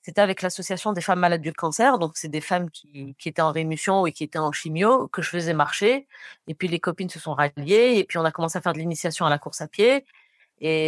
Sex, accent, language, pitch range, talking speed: female, French, French, 160-200 Hz, 265 wpm